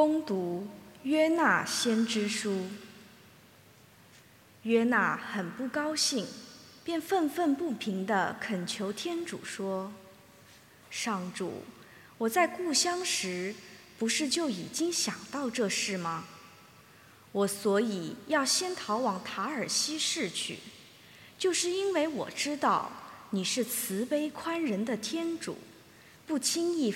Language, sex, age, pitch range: English, female, 20-39, 200-310 Hz